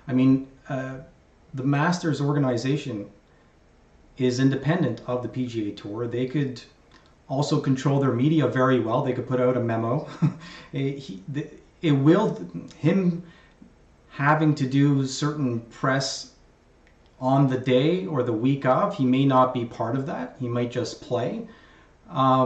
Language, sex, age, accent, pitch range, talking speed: English, male, 30-49, American, 120-145 Hz, 145 wpm